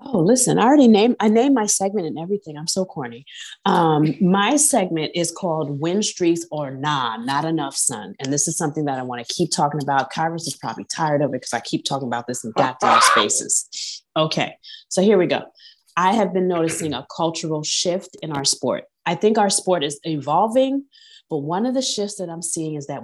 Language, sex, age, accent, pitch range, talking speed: English, female, 30-49, American, 140-180 Hz, 215 wpm